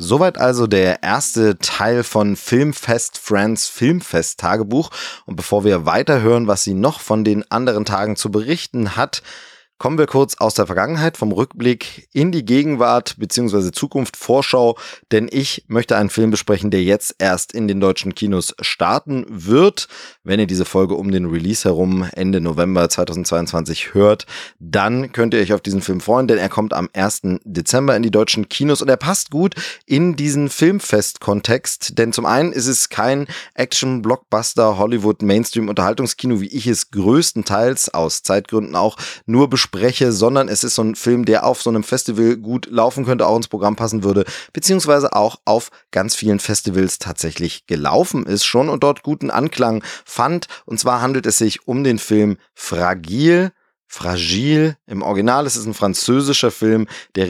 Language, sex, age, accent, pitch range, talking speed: German, male, 20-39, German, 100-130 Hz, 165 wpm